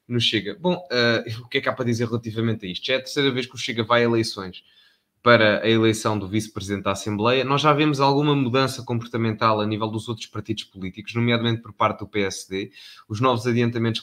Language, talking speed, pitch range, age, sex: Portuguese, 225 wpm, 110-130 Hz, 20-39, male